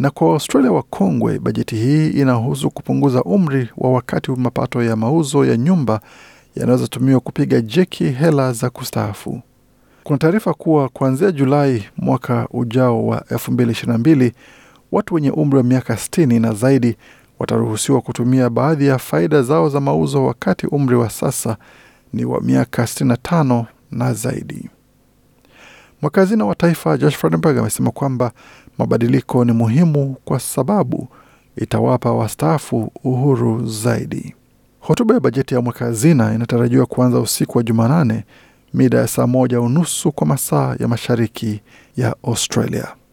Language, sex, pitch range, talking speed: Swahili, male, 120-140 Hz, 130 wpm